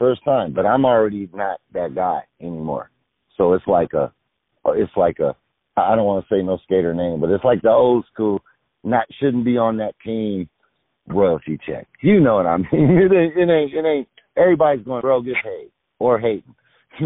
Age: 50-69